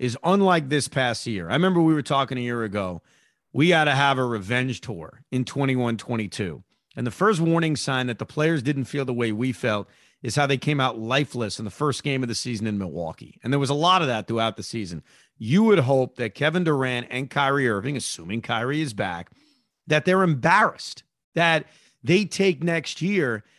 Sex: male